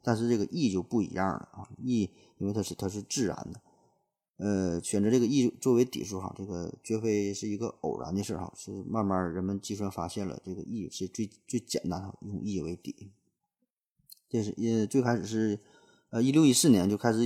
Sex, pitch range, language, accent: male, 95-120 Hz, Chinese, native